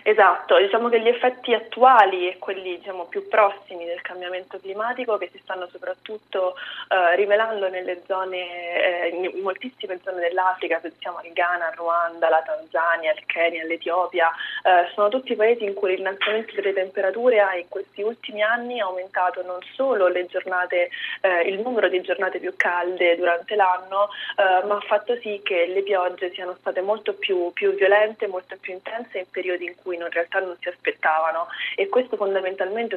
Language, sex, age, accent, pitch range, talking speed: Italian, female, 20-39, native, 175-205 Hz, 170 wpm